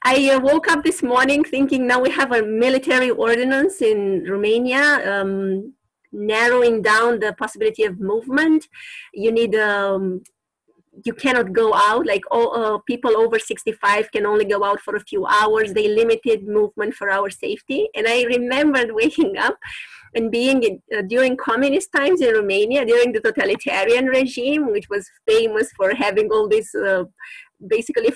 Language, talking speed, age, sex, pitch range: English, 160 wpm, 30-49, female, 230-330 Hz